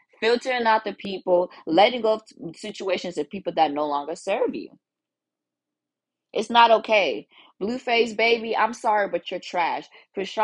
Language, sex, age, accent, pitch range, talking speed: English, female, 20-39, American, 165-220 Hz, 155 wpm